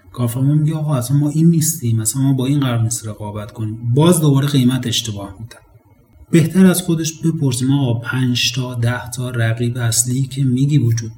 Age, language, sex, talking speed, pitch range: 30-49, Persian, male, 165 wpm, 115-145 Hz